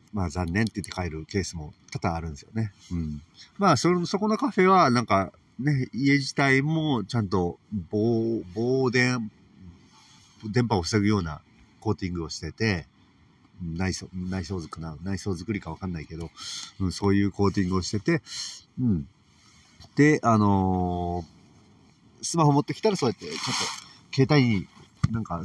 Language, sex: Japanese, male